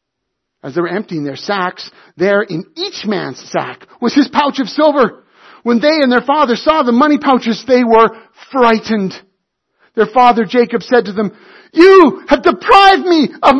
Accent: American